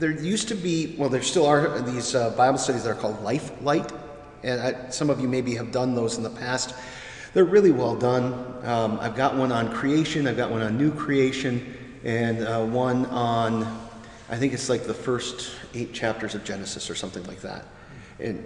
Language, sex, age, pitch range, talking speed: English, male, 40-59, 115-150 Hz, 205 wpm